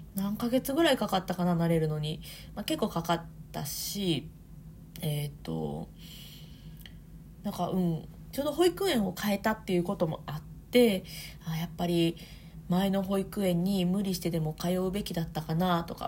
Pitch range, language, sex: 160-210 Hz, Japanese, female